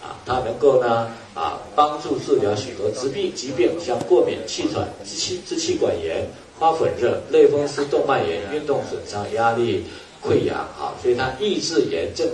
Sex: male